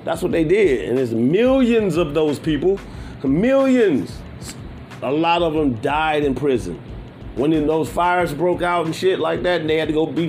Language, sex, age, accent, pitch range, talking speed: English, male, 30-49, American, 135-185 Hz, 190 wpm